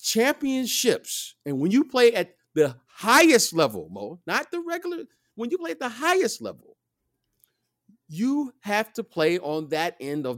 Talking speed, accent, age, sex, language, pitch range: 160 wpm, American, 50-69, male, English, 135-220 Hz